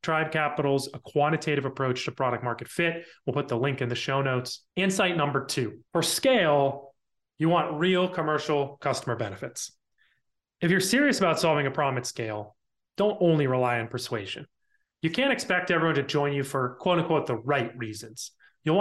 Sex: male